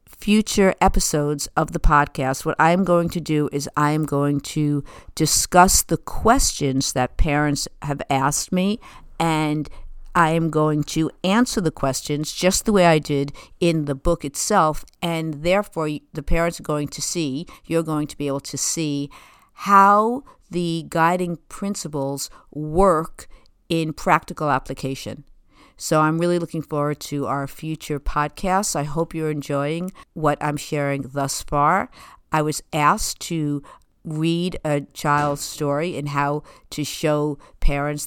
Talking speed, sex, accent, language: 145 wpm, female, American, English